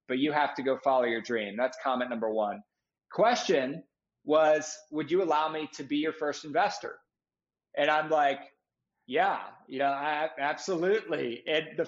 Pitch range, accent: 140-175 Hz, American